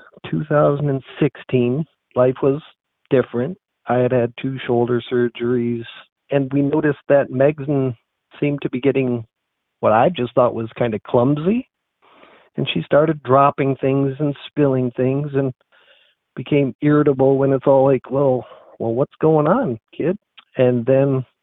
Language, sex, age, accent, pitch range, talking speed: English, male, 50-69, American, 125-140 Hz, 140 wpm